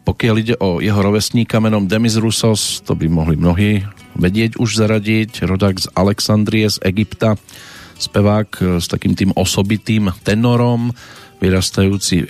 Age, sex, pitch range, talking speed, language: 40-59, male, 85-110 Hz, 130 wpm, Slovak